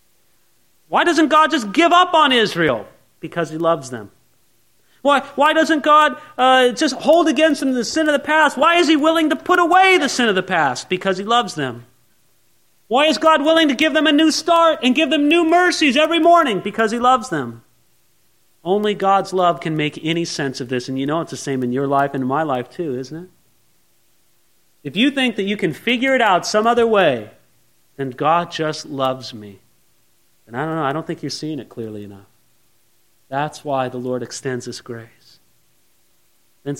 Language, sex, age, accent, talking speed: English, male, 40-59, American, 205 wpm